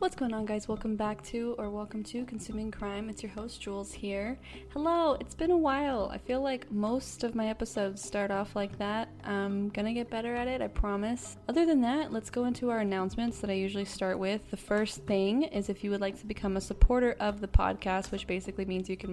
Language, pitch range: English, 195-215 Hz